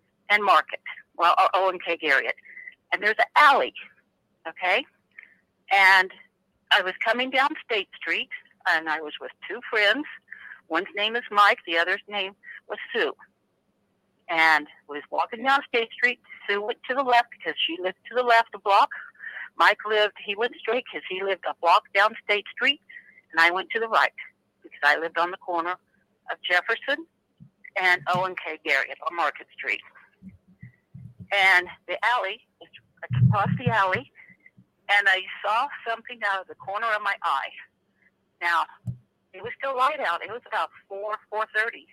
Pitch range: 185-245 Hz